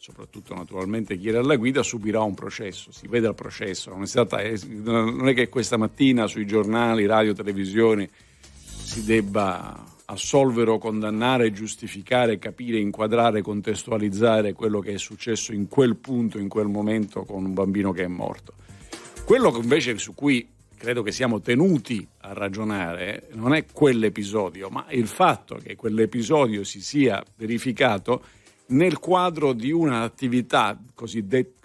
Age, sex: 50-69, male